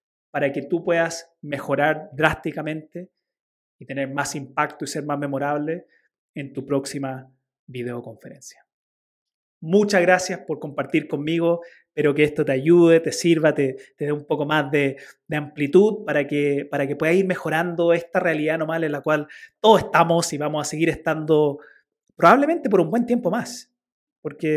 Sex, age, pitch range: male, 30-49, 145-175 Hz